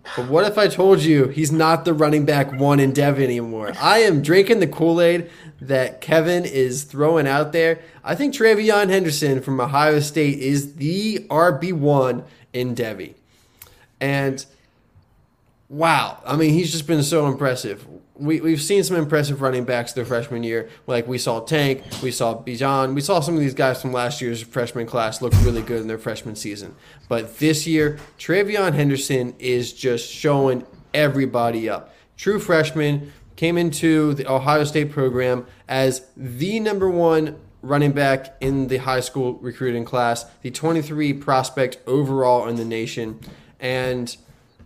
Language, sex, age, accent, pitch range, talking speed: English, male, 20-39, American, 120-150 Hz, 160 wpm